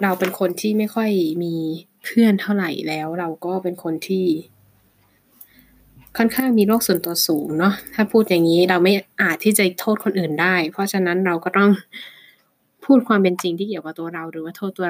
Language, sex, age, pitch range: Thai, female, 20-39, 165-195 Hz